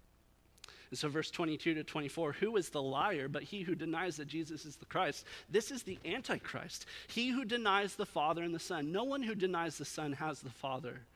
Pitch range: 145-185 Hz